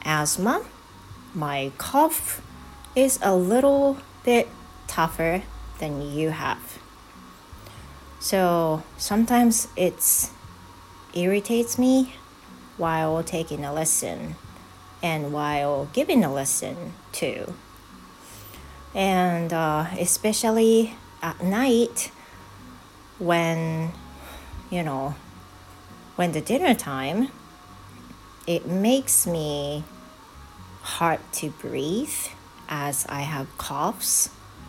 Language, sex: Japanese, female